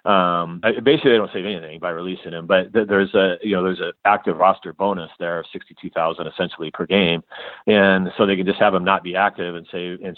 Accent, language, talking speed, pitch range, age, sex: American, English, 230 wpm, 85-105 Hz, 40-59, male